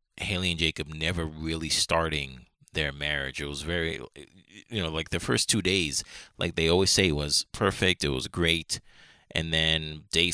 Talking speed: 180 wpm